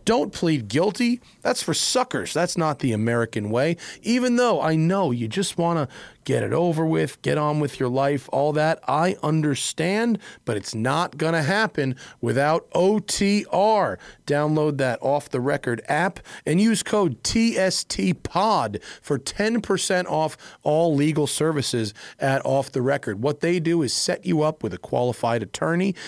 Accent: American